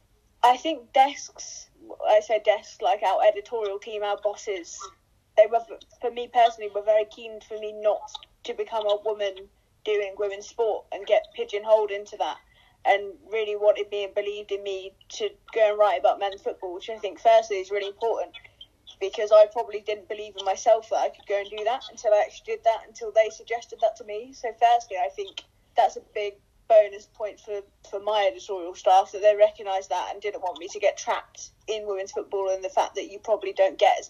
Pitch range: 205-260 Hz